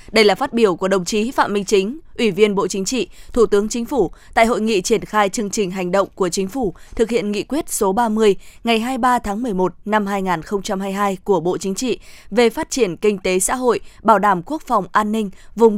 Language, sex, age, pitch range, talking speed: Vietnamese, female, 20-39, 195-235 Hz, 230 wpm